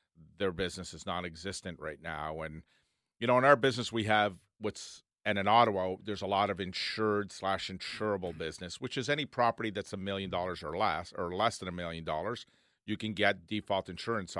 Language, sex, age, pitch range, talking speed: English, male, 40-59, 90-105 Hz, 195 wpm